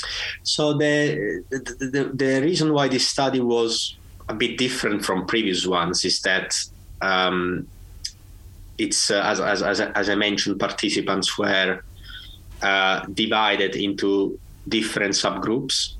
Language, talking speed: English, 130 wpm